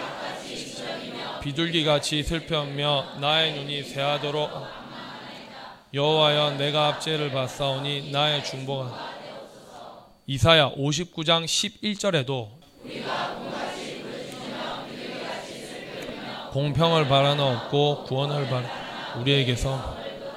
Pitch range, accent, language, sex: 135-165 Hz, native, Korean, male